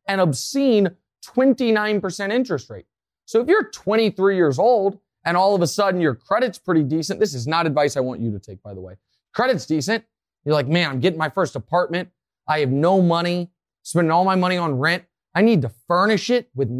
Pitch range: 170-250 Hz